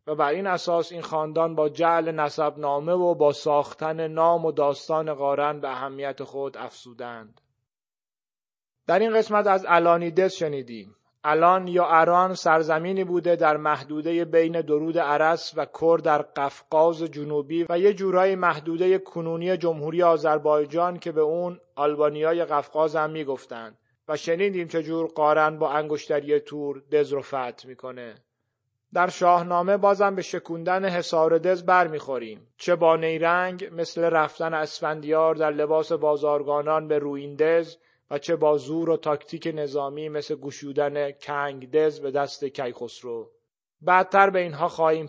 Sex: male